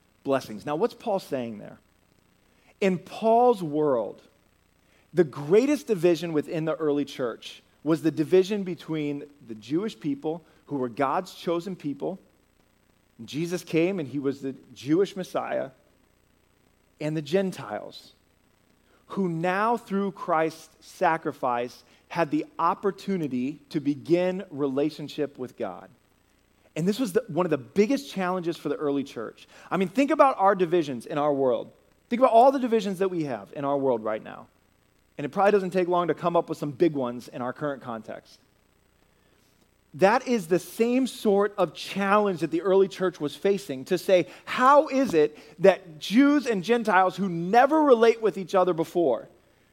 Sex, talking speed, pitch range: male, 160 wpm, 145-195 Hz